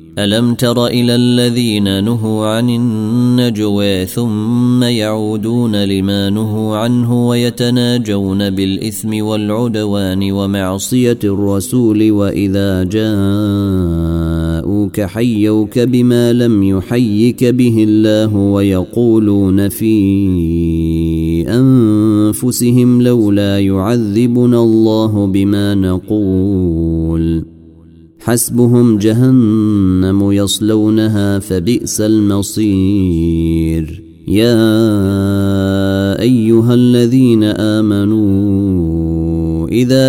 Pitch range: 95-115 Hz